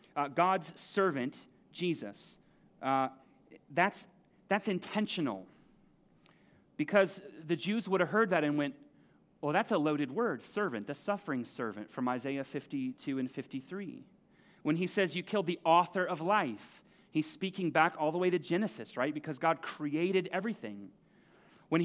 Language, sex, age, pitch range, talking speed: English, male, 30-49, 160-205 Hz, 150 wpm